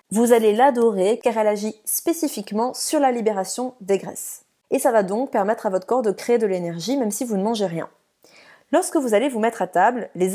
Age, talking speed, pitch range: 30-49, 220 wpm, 190-250 Hz